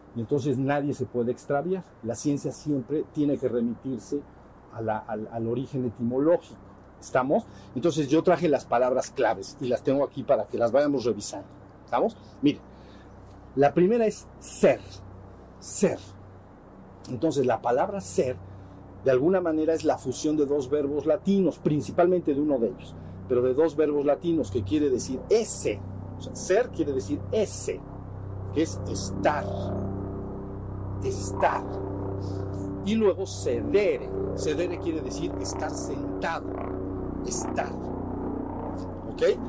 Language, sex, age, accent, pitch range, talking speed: Spanish, male, 50-69, Mexican, 100-165 Hz, 135 wpm